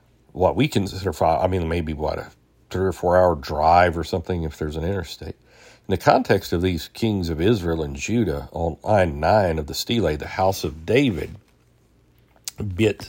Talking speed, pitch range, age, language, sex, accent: 190 wpm, 80-100 Hz, 60-79, English, male, American